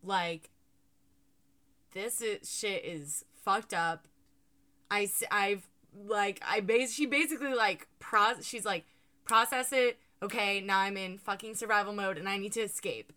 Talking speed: 145 wpm